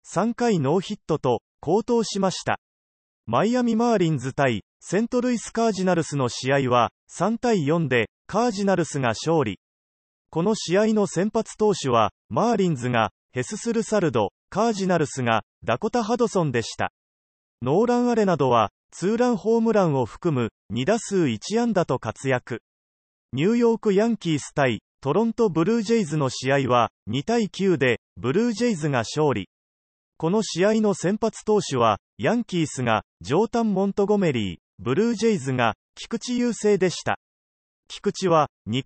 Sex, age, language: male, 30-49, Japanese